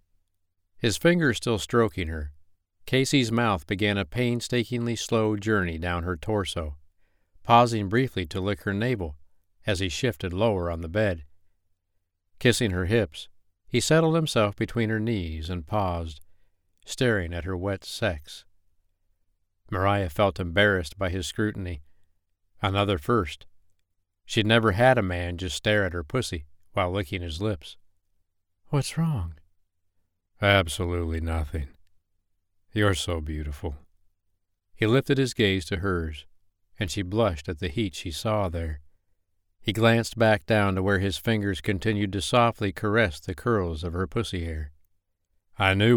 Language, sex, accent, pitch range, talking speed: English, male, American, 85-105 Hz, 140 wpm